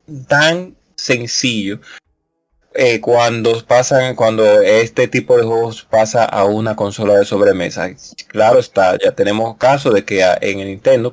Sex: male